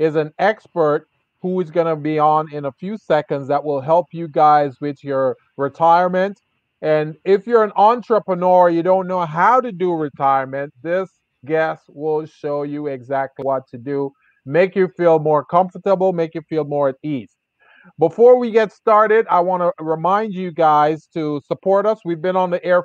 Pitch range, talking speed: 150-190 Hz, 180 wpm